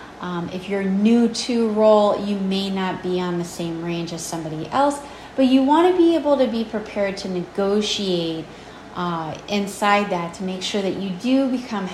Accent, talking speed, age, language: American, 190 wpm, 30-49, English